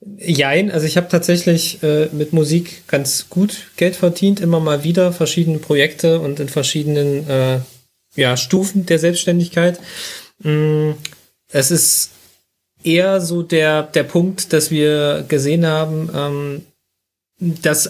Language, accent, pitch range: German, German, 135-170 Hz